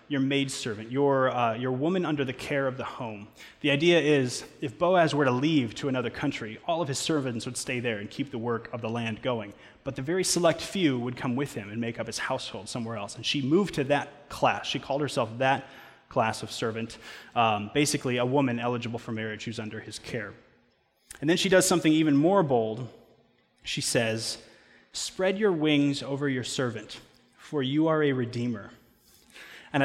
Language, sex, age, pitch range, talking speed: English, male, 20-39, 120-145 Hz, 200 wpm